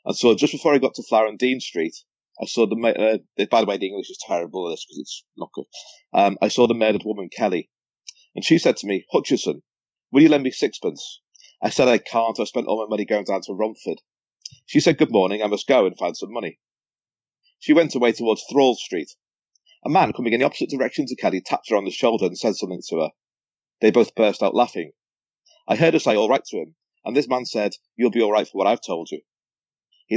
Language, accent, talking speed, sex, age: English, British, 240 wpm, male, 40-59